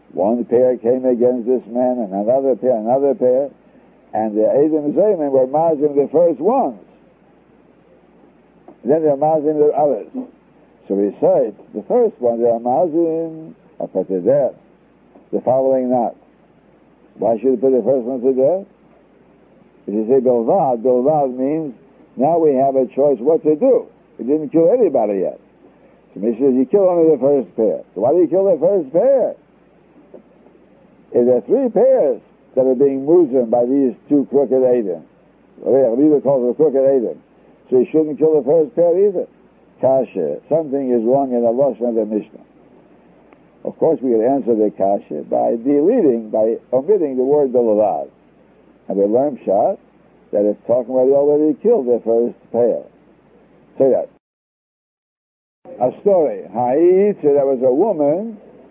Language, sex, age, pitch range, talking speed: English, male, 60-79, 125-155 Hz, 165 wpm